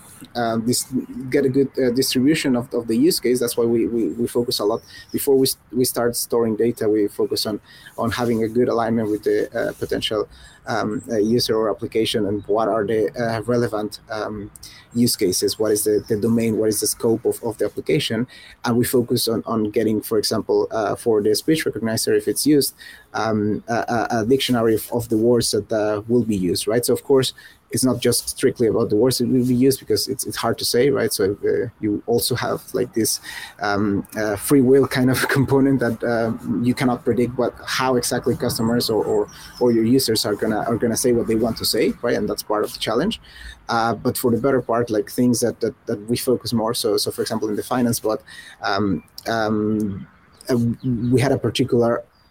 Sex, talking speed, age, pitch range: male, 220 wpm, 30-49, 115-130 Hz